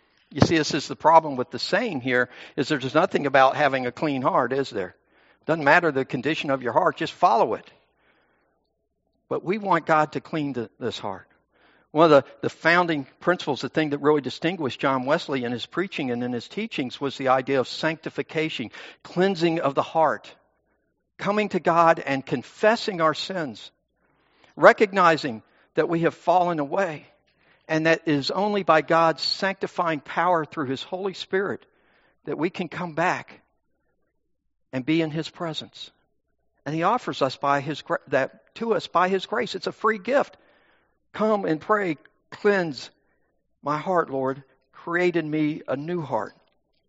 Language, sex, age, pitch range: English, male, 60-79, 135-175 Hz